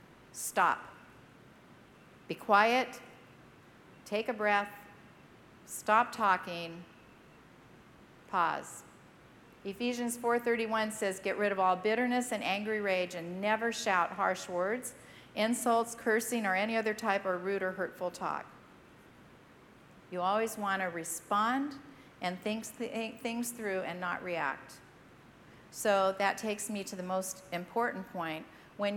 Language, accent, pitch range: English, American, 185-225 Hz